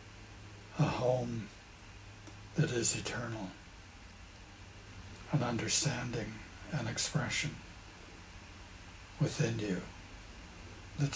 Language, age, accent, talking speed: English, 60-79, American, 65 wpm